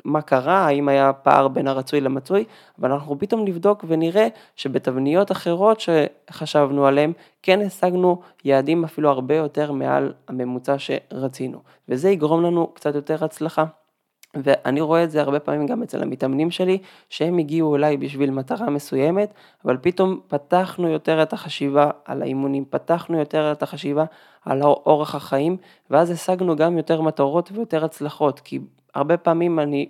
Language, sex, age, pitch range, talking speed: Hebrew, male, 20-39, 140-170 Hz, 150 wpm